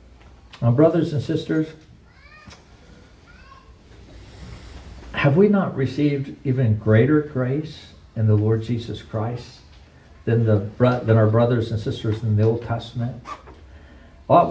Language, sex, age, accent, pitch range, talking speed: English, male, 60-79, American, 110-150 Hz, 110 wpm